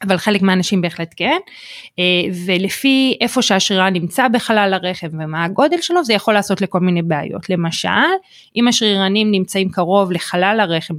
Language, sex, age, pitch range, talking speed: Hebrew, female, 30-49, 170-225 Hz, 150 wpm